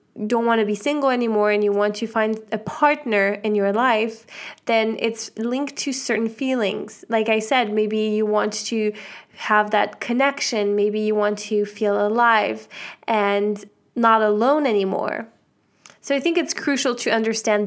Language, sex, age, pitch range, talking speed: English, female, 20-39, 205-230 Hz, 165 wpm